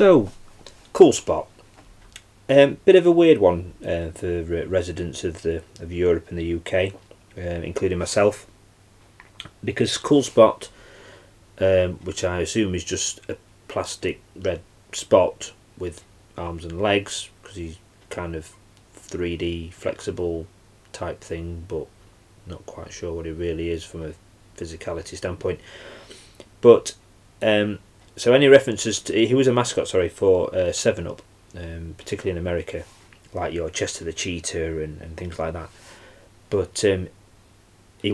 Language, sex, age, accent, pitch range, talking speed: English, male, 30-49, British, 85-105 Hz, 145 wpm